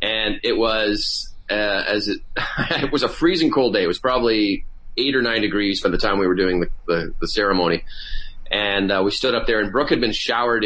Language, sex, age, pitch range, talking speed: English, male, 30-49, 95-115 Hz, 225 wpm